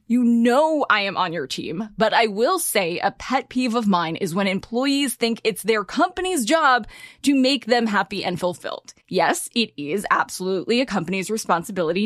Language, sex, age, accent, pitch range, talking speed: English, female, 20-39, American, 205-270 Hz, 185 wpm